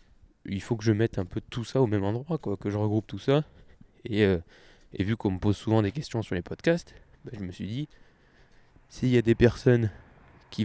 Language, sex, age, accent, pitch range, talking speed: French, male, 20-39, French, 100-120 Hz, 235 wpm